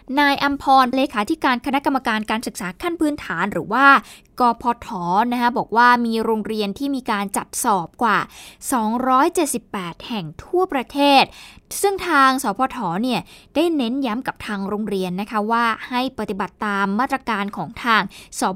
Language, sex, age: Thai, female, 20-39